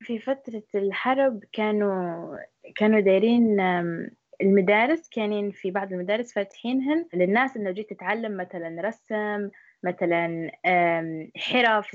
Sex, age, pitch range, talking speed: female, 20-39, 185-230 Hz, 100 wpm